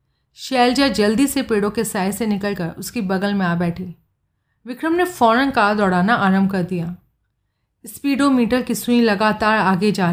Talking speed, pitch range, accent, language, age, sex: 165 wpm, 180-235 Hz, native, Hindi, 30-49, female